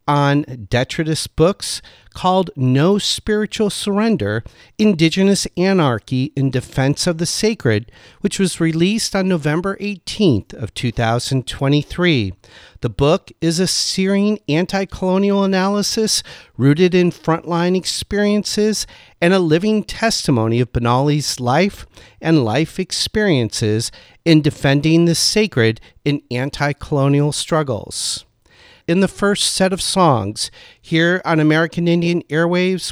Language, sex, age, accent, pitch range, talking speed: English, male, 50-69, American, 135-190 Hz, 110 wpm